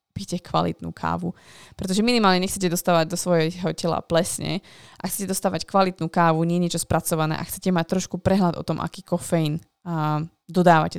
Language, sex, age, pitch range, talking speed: Slovak, female, 20-39, 165-195 Hz, 170 wpm